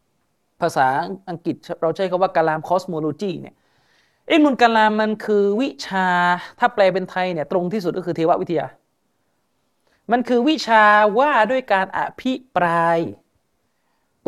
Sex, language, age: male, Thai, 30-49